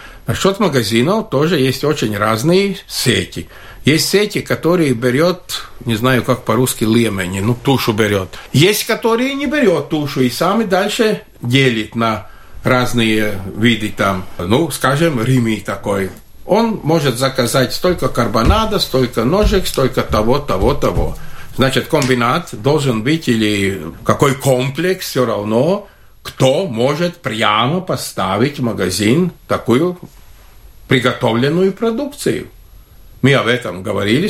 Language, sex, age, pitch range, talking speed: Russian, male, 50-69, 110-170 Hz, 115 wpm